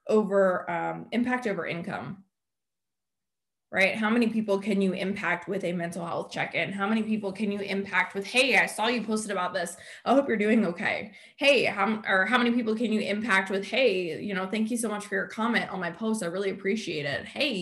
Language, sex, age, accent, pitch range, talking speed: English, female, 20-39, American, 185-220 Hz, 220 wpm